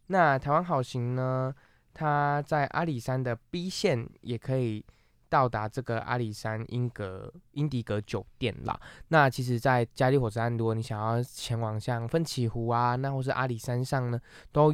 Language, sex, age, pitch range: Chinese, male, 20-39, 115-135 Hz